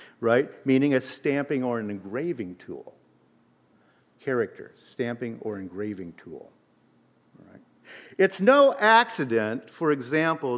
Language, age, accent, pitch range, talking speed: English, 50-69, American, 120-180 Hz, 100 wpm